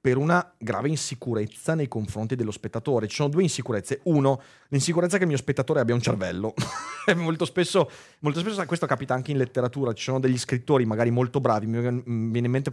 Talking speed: 195 wpm